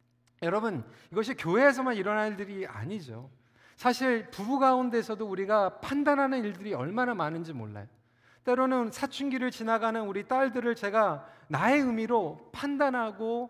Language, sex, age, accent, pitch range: Korean, male, 40-59, native, 165-245 Hz